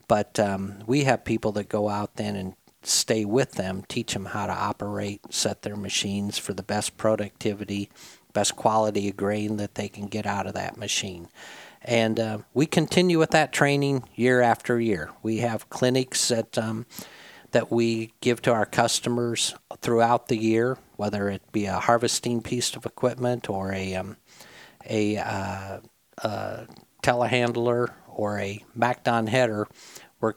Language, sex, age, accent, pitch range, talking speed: English, male, 50-69, American, 100-120 Hz, 160 wpm